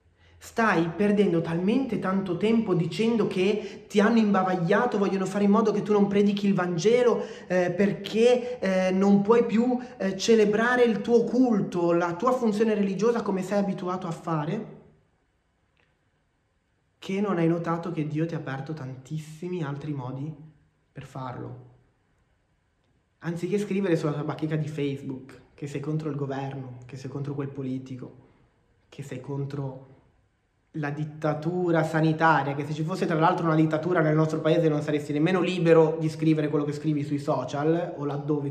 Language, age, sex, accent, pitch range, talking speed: Italian, 20-39, male, native, 145-200 Hz, 155 wpm